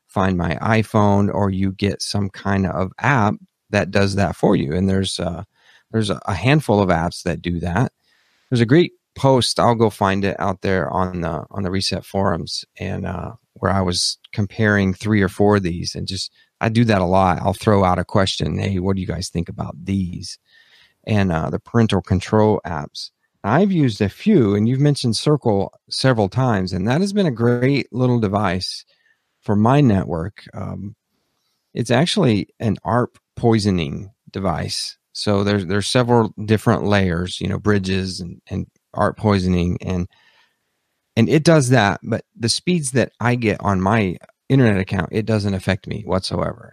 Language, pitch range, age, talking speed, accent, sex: English, 95-115 Hz, 40-59, 180 wpm, American, male